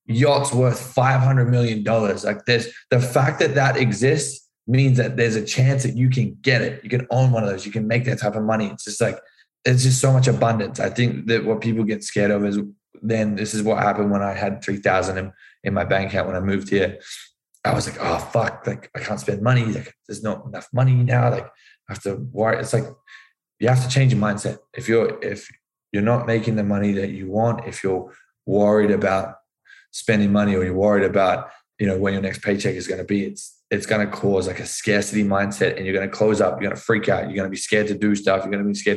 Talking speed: 255 wpm